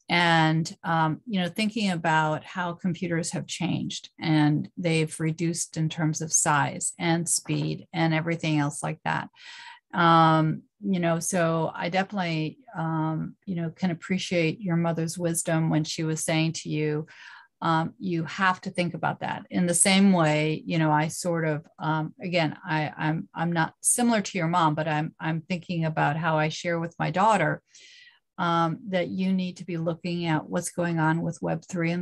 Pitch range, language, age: 160-180 Hz, English, 40-59